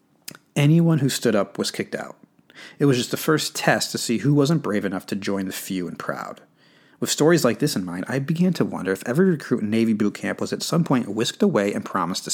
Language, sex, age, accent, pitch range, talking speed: English, male, 30-49, American, 105-145 Hz, 250 wpm